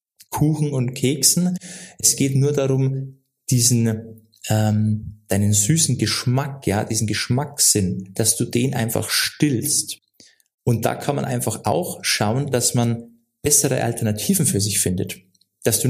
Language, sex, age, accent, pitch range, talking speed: German, male, 20-39, German, 115-160 Hz, 135 wpm